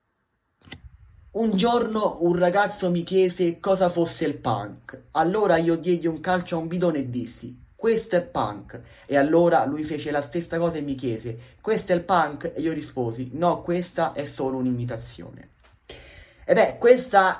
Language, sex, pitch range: Italian, male, 125-165 Hz